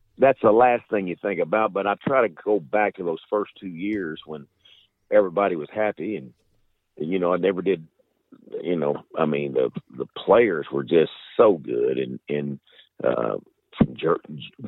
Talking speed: 175 wpm